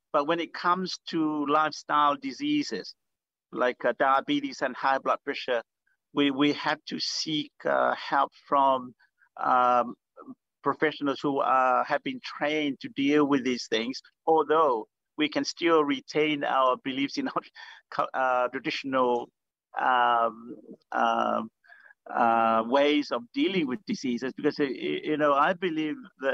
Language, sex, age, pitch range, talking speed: English, male, 50-69, 130-195 Hz, 135 wpm